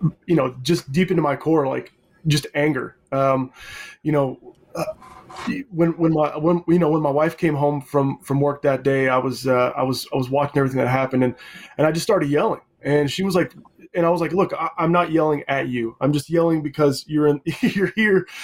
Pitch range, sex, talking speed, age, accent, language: 150-185 Hz, male, 230 wpm, 20-39, American, English